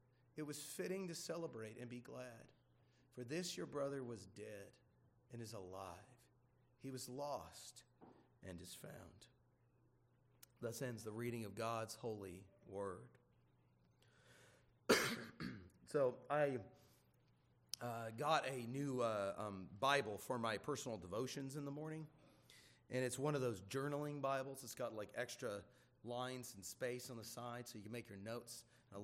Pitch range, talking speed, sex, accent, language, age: 115-140 Hz, 145 wpm, male, American, English, 30-49